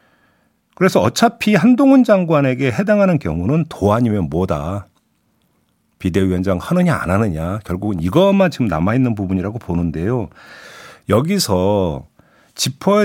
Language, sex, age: Korean, male, 50-69